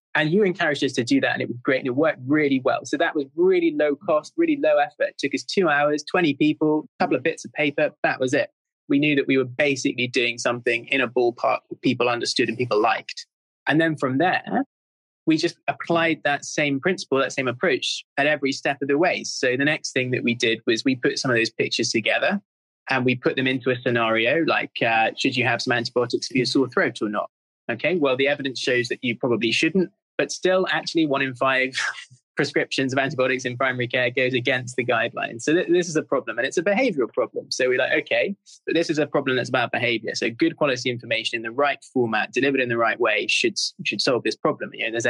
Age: 20-39